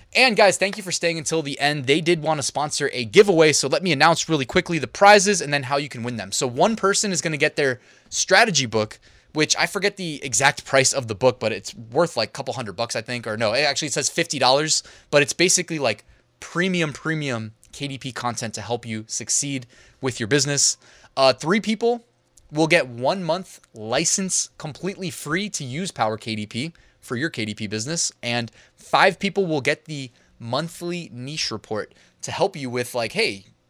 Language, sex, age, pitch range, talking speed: English, male, 20-39, 120-170 Hz, 205 wpm